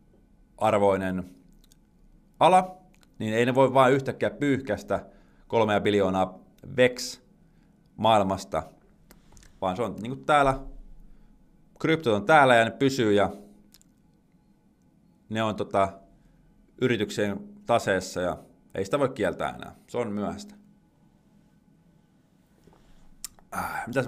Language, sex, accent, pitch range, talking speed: Finnish, male, native, 100-140 Hz, 95 wpm